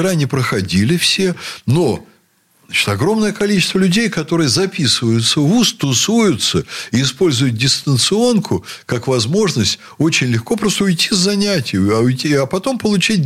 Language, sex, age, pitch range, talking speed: Russian, male, 60-79, 110-175 Hz, 120 wpm